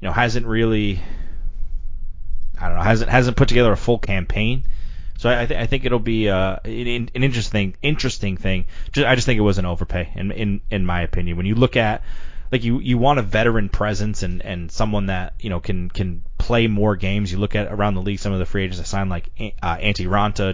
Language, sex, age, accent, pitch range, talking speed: English, male, 20-39, American, 90-115 Hz, 230 wpm